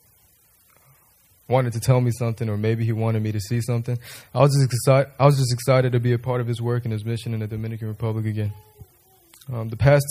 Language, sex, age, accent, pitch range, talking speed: English, male, 20-39, American, 110-125 Hz, 215 wpm